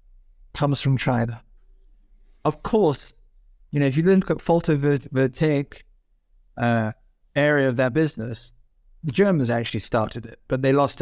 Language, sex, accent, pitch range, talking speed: English, male, American, 125-170 Hz, 135 wpm